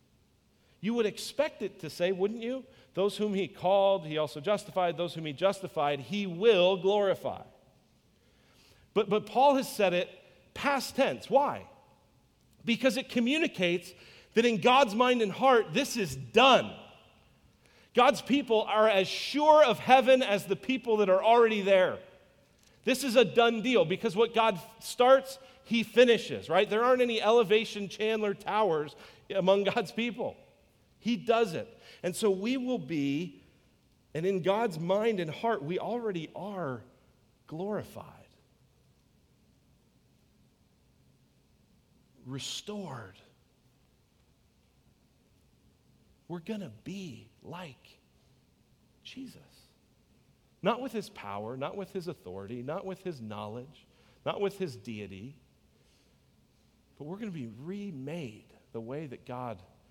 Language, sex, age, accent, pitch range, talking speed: English, male, 40-59, American, 160-230 Hz, 130 wpm